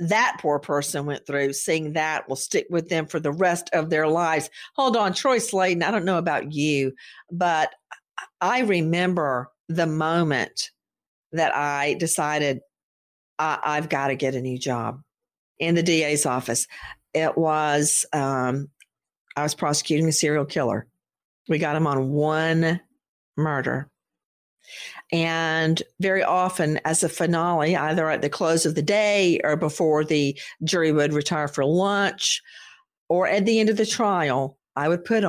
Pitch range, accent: 150-185 Hz, American